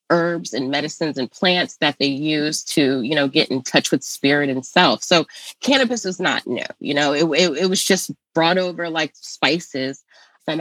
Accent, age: American, 20-39